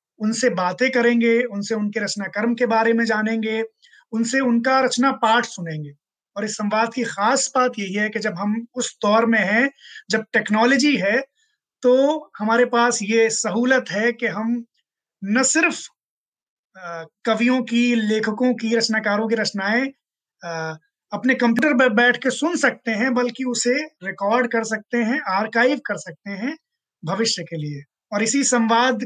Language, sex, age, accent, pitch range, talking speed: Hindi, male, 20-39, native, 210-260 Hz, 155 wpm